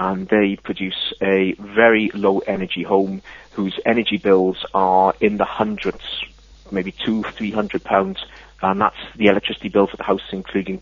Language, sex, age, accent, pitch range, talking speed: English, male, 30-49, British, 95-115 Hz, 160 wpm